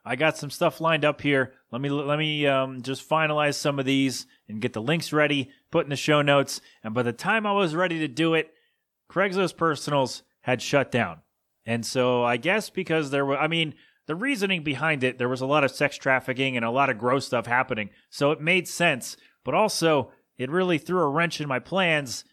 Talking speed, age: 225 wpm, 30-49